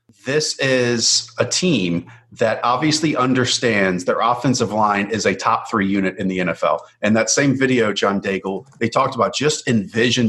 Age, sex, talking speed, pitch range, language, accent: 40-59, male, 170 wpm, 110-150 Hz, English, American